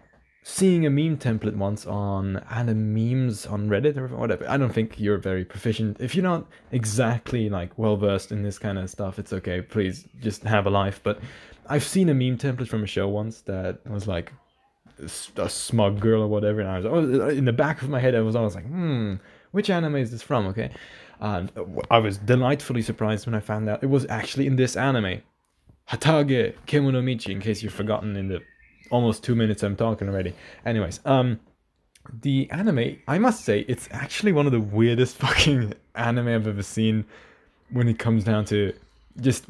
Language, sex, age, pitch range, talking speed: English, male, 20-39, 105-130 Hz, 195 wpm